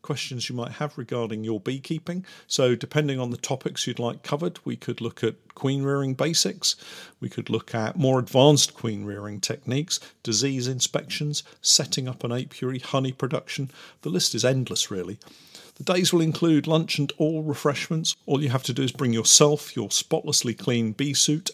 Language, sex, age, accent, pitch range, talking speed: English, male, 50-69, British, 115-150 Hz, 180 wpm